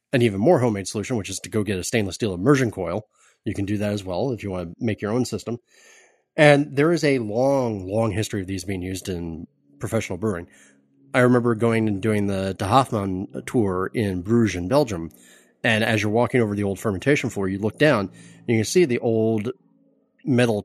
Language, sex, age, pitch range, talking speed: English, male, 30-49, 100-130 Hz, 220 wpm